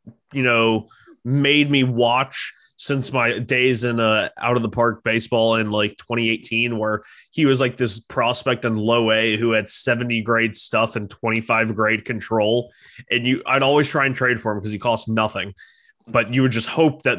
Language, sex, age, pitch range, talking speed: English, male, 20-39, 110-130 Hz, 190 wpm